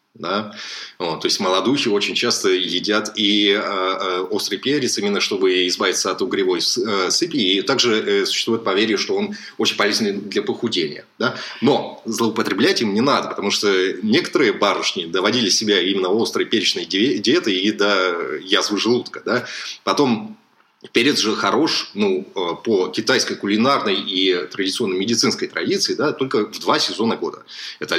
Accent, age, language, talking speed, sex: native, 20-39, Russian, 135 wpm, male